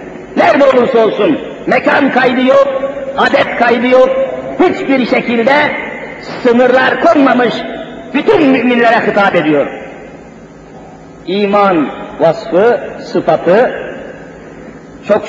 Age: 50-69